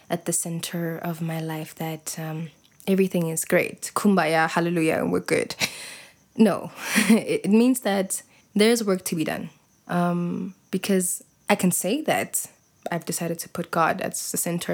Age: 20-39